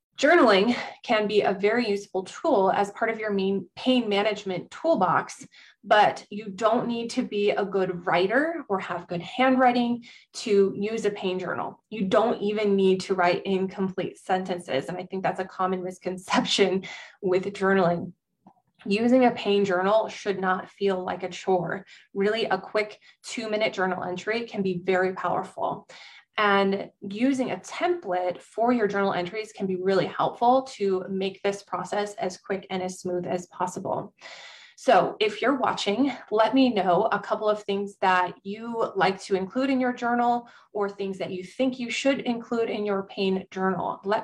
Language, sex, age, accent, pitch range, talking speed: English, female, 20-39, American, 185-225 Hz, 170 wpm